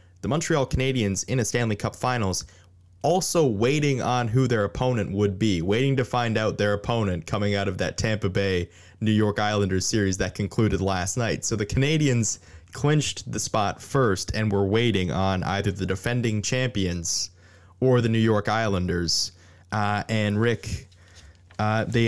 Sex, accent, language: male, American, English